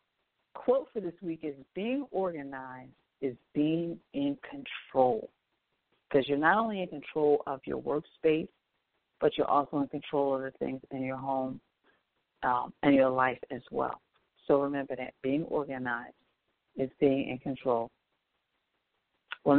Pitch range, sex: 145-190 Hz, female